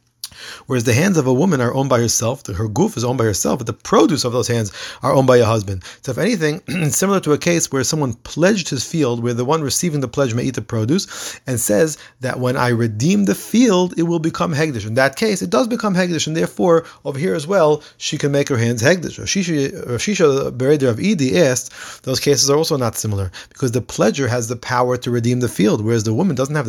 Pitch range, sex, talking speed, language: 115-160 Hz, male, 235 wpm, English